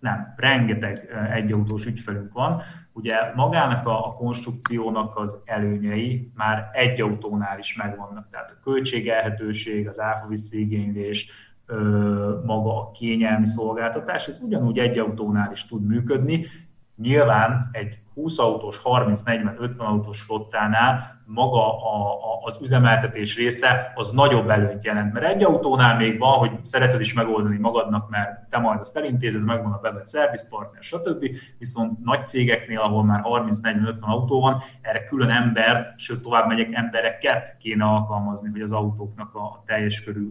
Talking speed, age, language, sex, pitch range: 140 wpm, 30-49, Hungarian, male, 105-120 Hz